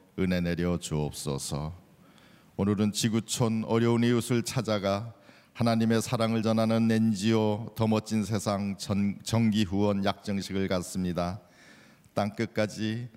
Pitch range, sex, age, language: 100-115 Hz, male, 50-69, Korean